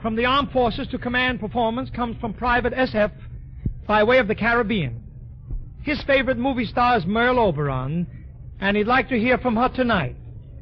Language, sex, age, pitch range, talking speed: English, male, 60-79, 155-205 Hz, 175 wpm